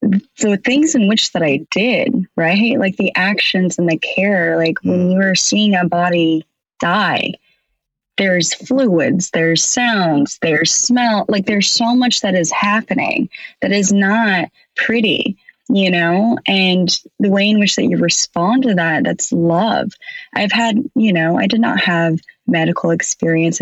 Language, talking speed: English, 160 wpm